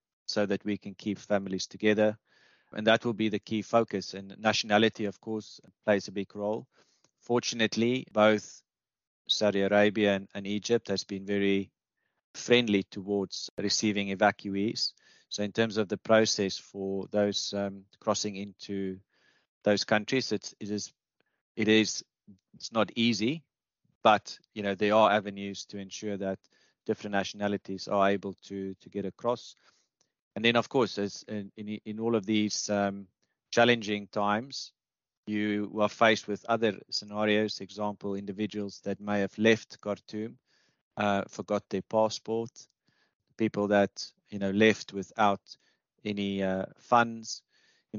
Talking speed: 145 wpm